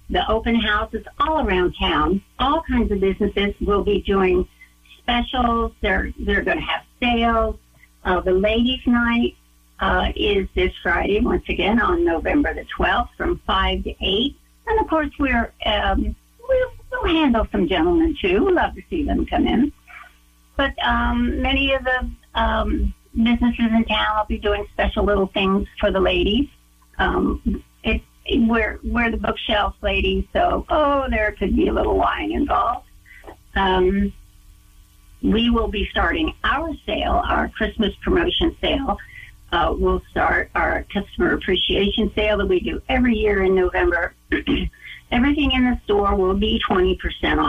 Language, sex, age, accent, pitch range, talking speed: English, female, 60-79, American, 190-255 Hz, 155 wpm